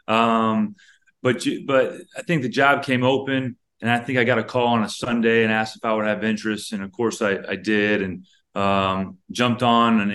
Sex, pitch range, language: male, 105-120 Hz, English